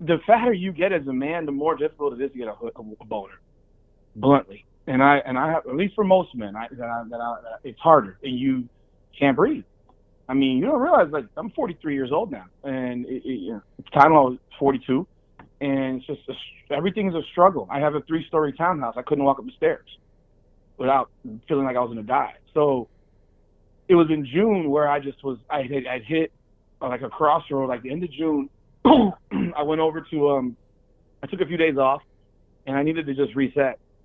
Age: 30-49